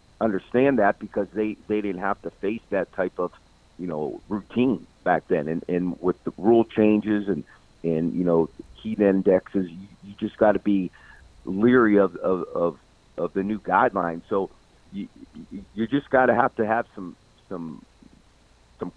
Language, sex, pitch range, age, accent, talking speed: English, male, 90-105 Hz, 50-69, American, 175 wpm